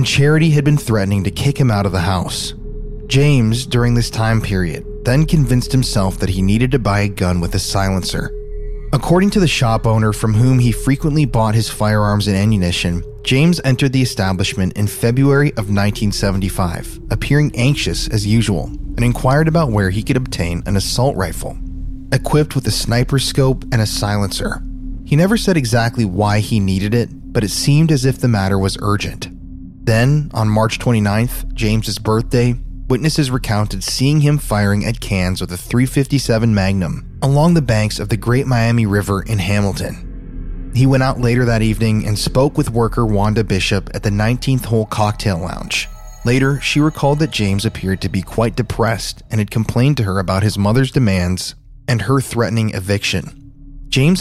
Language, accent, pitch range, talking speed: English, American, 100-135 Hz, 175 wpm